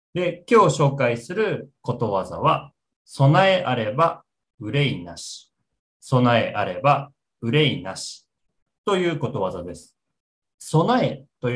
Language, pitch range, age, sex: Japanese, 115-165 Hz, 40-59, male